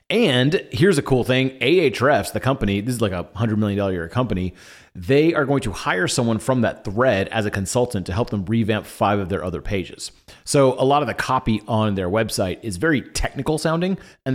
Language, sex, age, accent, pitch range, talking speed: English, male, 30-49, American, 100-135 Hz, 215 wpm